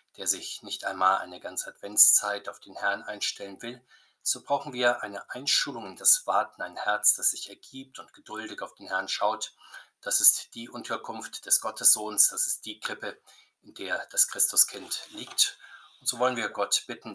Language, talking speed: German, 180 wpm